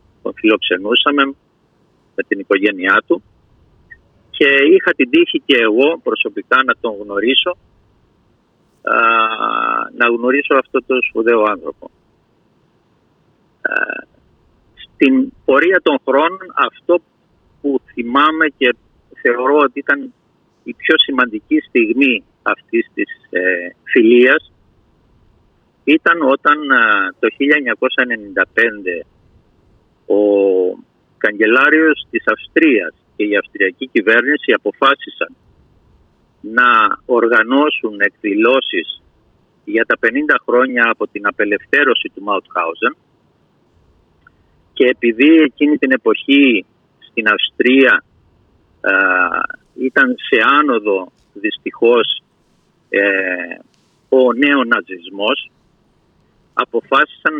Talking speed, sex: 85 wpm, male